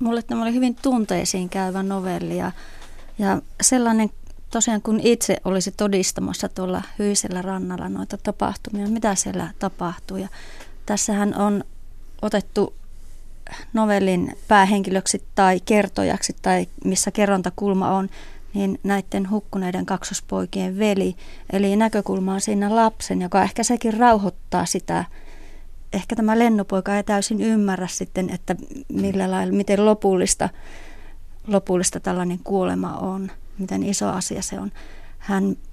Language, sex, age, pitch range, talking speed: Finnish, female, 30-49, 190-215 Hz, 120 wpm